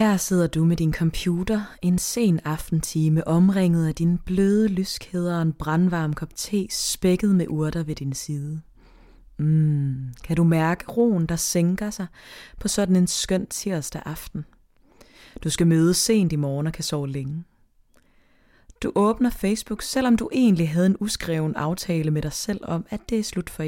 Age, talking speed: 20-39, 170 wpm